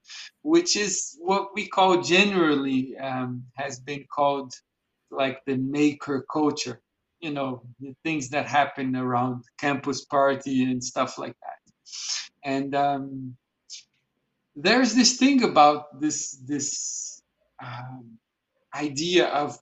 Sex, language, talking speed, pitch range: male, English, 115 wpm, 135-155 Hz